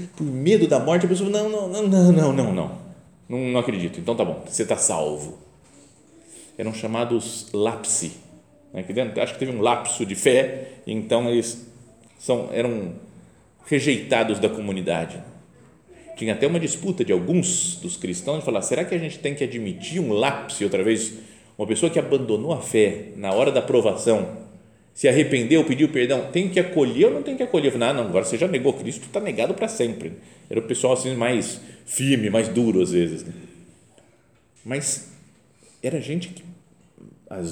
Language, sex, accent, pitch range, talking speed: Portuguese, male, Brazilian, 110-175 Hz, 180 wpm